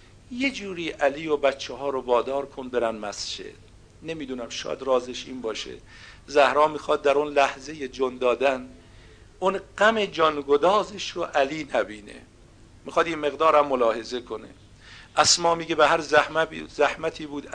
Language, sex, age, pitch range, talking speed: Persian, male, 50-69, 130-165 Hz, 135 wpm